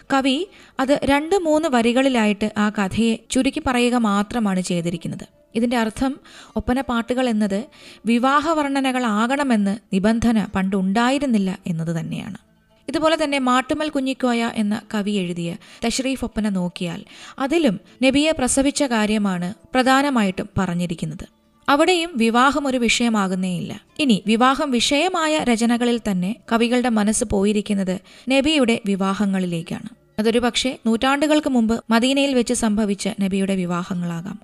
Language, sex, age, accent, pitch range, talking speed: Malayalam, female, 20-39, native, 200-260 Hz, 105 wpm